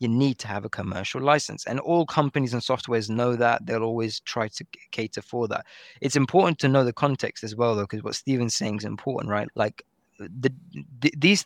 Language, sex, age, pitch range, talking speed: English, male, 20-39, 115-140 Hz, 215 wpm